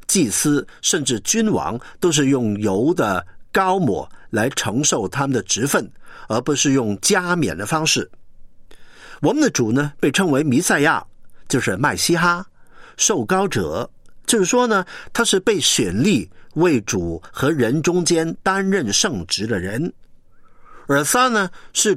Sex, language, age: male, Chinese, 50-69